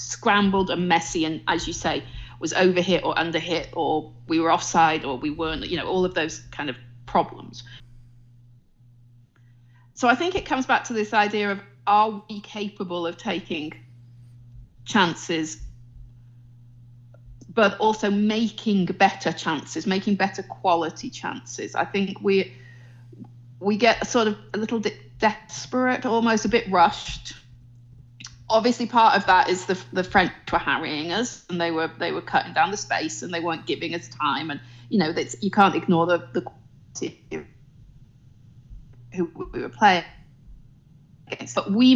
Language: English